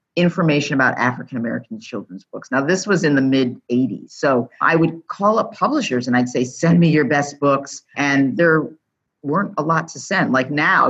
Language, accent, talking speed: English, American, 200 wpm